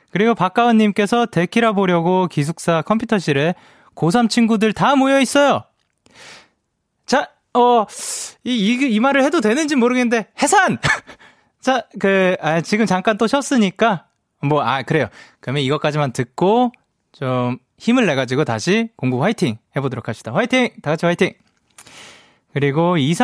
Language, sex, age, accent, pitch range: Korean, male, 20-39, native, 165-240 Hz